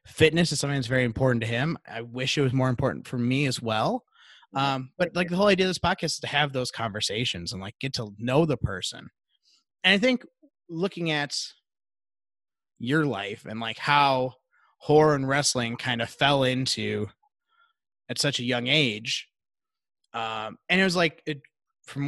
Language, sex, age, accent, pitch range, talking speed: English, male, 30-49, American, 120-160 Hz, 180 wpm